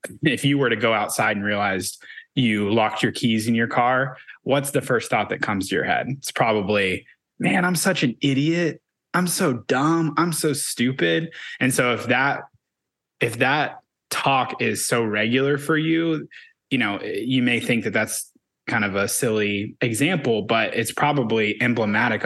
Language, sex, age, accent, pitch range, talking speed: English, male, 20-39, American, 105-135 Hz, 175 wpm